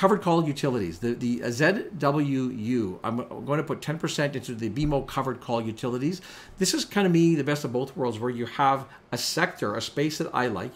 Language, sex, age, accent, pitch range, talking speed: English, male, 50-69, American, 110-140 Hz, 205 wpm